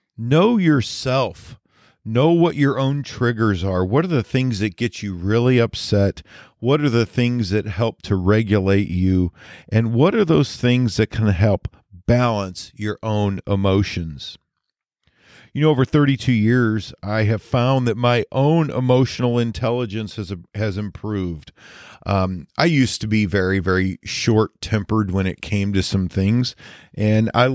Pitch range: 100-120 Hz